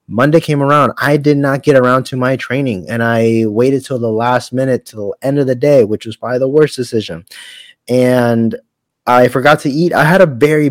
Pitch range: 110-135 Hz